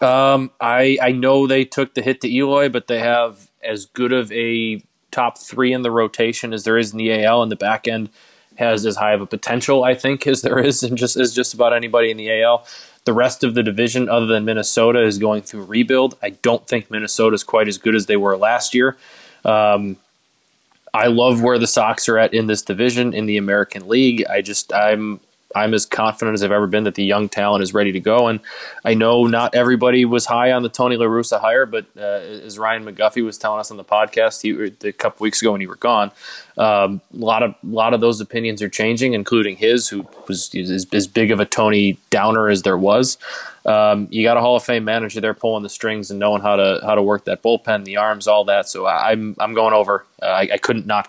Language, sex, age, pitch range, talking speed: English, male, 20-39, 105-120 Hz, 235 wpm